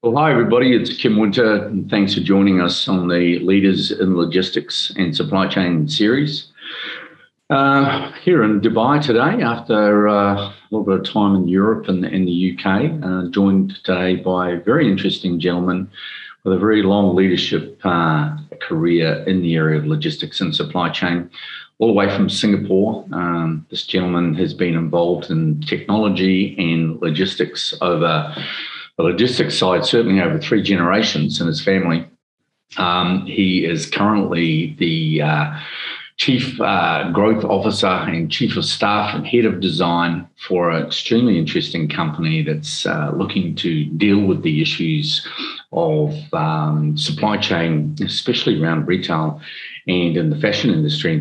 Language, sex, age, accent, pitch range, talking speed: English, male, 50-69, Australian, 85-110 Hz, 150 wpm